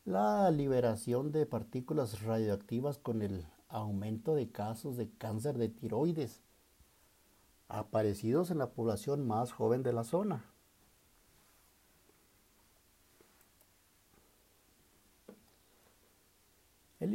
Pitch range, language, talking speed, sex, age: 95-140 Hz, Spanish, 85 wpm, male, 50-69